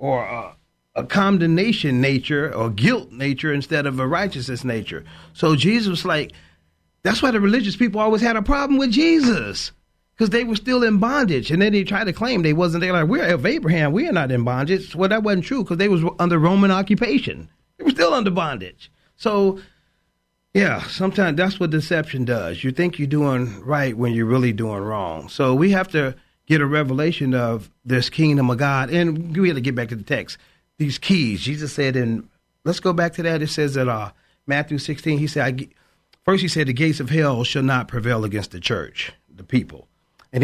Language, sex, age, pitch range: English, male, 40-59, 125-185 Hz